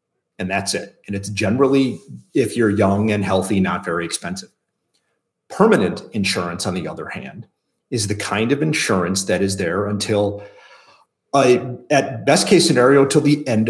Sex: male